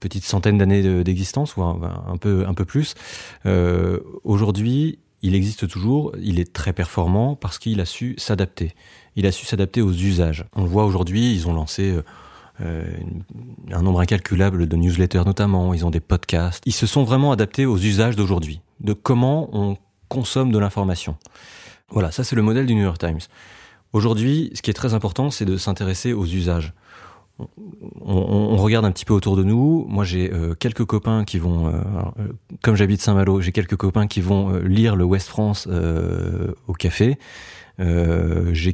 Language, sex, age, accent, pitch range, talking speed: French, male, 30-49, French, 90-110 Hz, 185 wpm